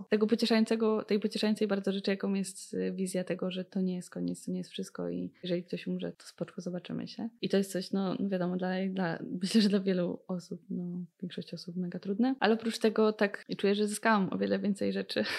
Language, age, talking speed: Polish, 20-39, 220 wpm